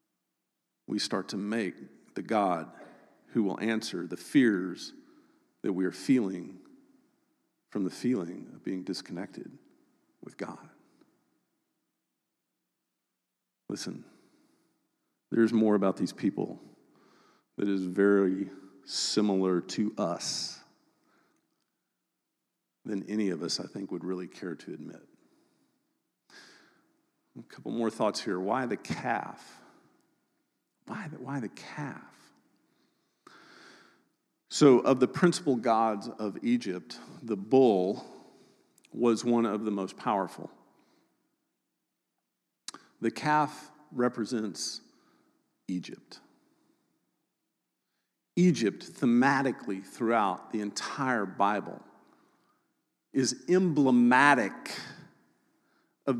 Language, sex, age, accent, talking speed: English, male, 50-69, American, 90 wpm